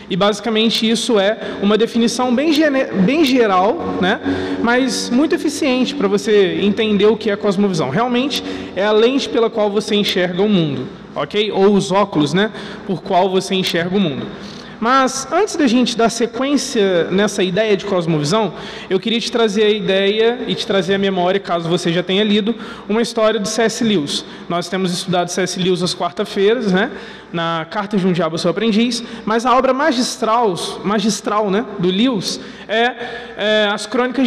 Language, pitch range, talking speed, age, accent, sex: Portuguese, 195-235 Hz, 175 wpm, 20-39, Brazilian, male